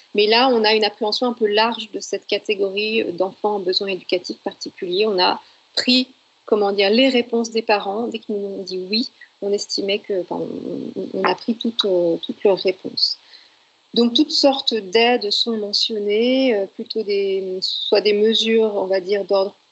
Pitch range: 195-230 Hz